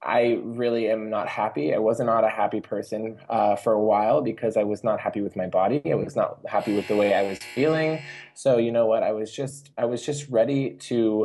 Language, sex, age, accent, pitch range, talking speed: English, male, 20-39, American, 100-125 Hz, 240 wpm